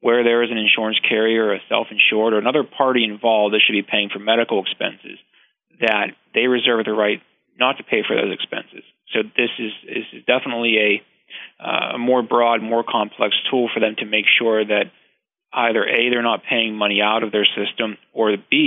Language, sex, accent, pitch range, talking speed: English, male, American, 105-120 Hz, 200 wpm